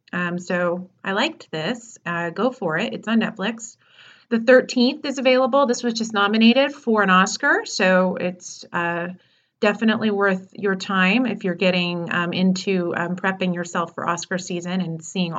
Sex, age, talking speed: female, 30-49, 170 wpm